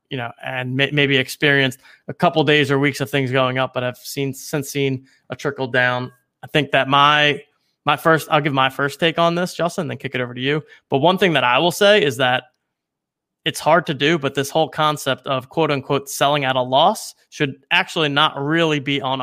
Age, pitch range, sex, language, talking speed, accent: 20-39, 130-155 Hz, male, English, 230 wpm, American